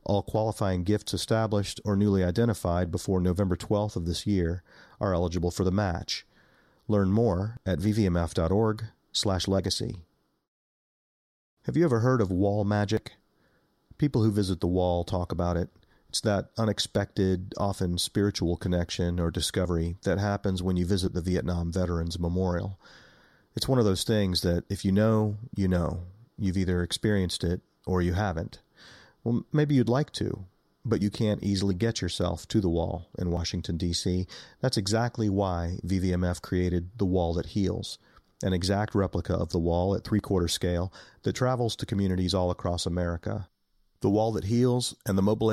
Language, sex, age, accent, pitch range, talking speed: English, male, 40-59, American, 90-105 Hz, 165 wpm